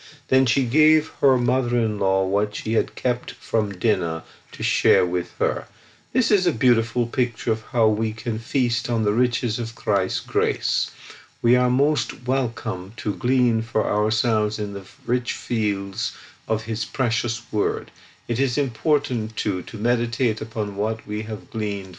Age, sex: 50-69, male